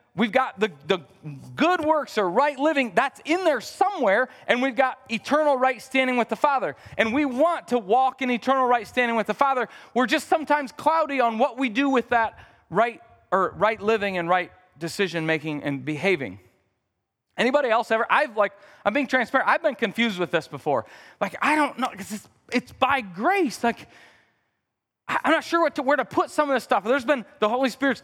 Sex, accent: male, American